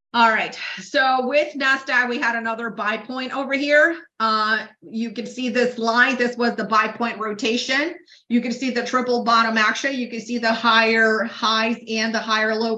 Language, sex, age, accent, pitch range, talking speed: English, female, 30-49, American, 220-255 Hz, 195 wpm